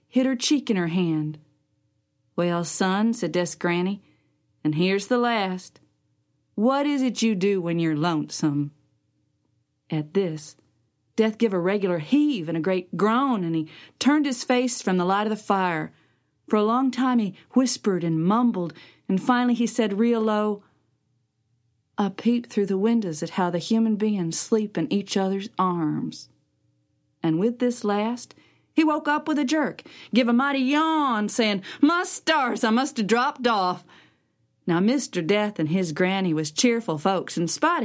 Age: 40-59